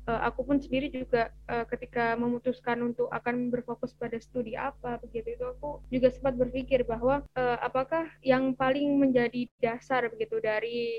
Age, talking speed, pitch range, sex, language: 20-39, 160 wpm, 240-265 Hz, female, Indonesian